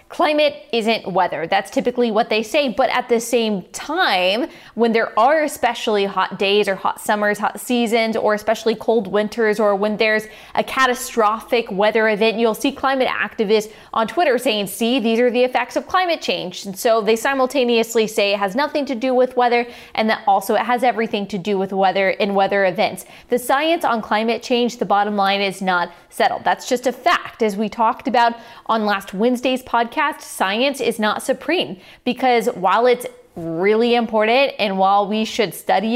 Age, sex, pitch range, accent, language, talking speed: 20-39, female, 205-250 Hz, American, English, 185 wpm